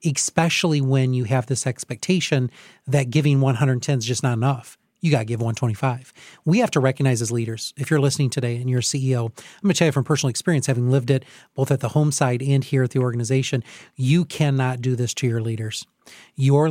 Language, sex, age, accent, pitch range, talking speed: English, male, 40-59, American, 125-150 Hz, 220 wpm